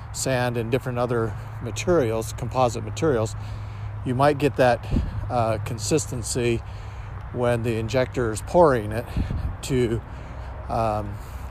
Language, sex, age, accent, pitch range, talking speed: English, male, 50-69, American, 105-125 Hz, 110 wpm